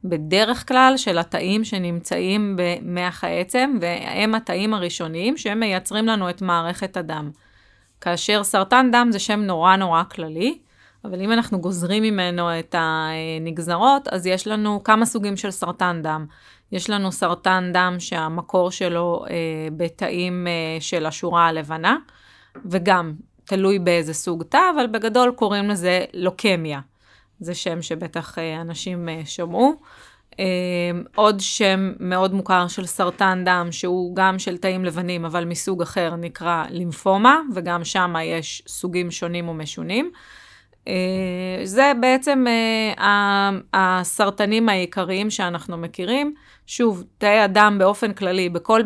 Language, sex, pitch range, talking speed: Hebrew, female, 175-210 Hz, 120 wpm